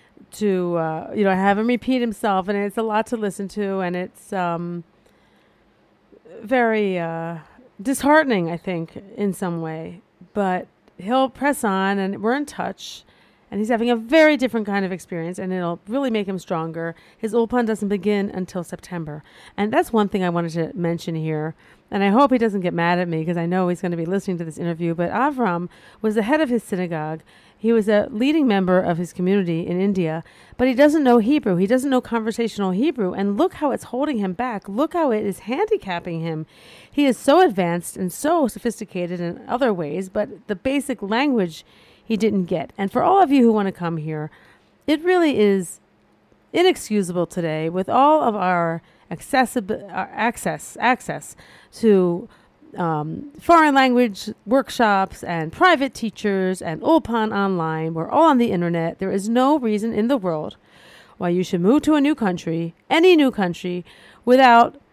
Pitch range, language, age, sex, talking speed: 175-240 Hz, English, 40-59, female, 185 wpm